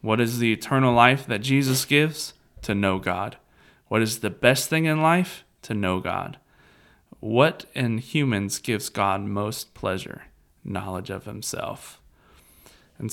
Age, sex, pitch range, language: 20-39, male, 100-130 Hz, English